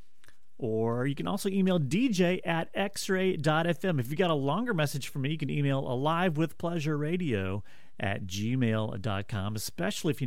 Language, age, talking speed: English, 30-49, 165 wpm